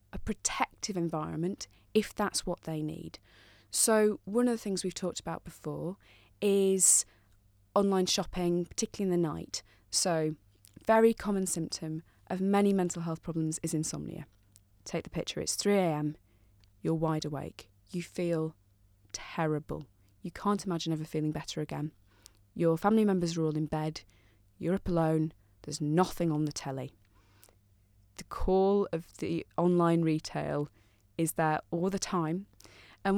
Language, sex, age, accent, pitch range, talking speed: English, female, 20-39, British, 150-195 Hz, 150 wpm